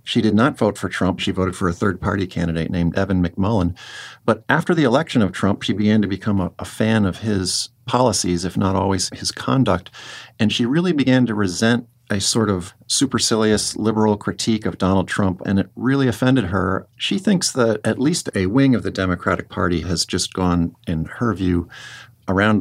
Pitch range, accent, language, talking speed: 90-110 Hz, American, English, 195 wpm